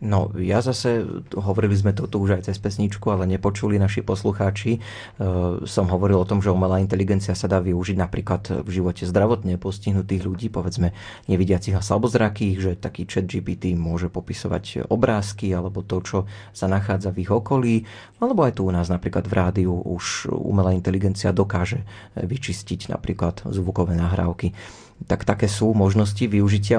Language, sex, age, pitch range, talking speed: Slovak, male, 30-49, 95-105 Hz, 160 wpm